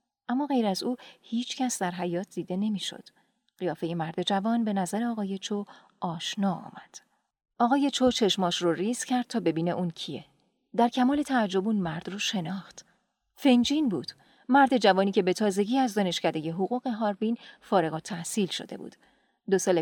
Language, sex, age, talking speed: Persian, female, 40-59, 155 wpm